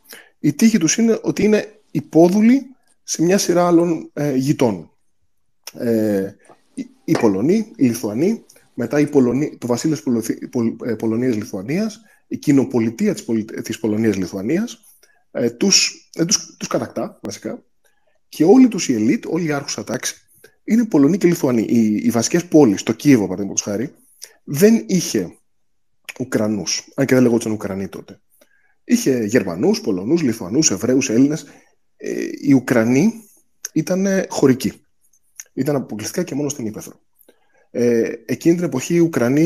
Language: Greek